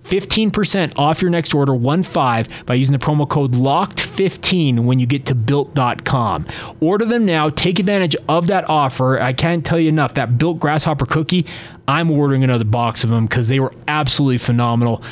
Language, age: English, 30-49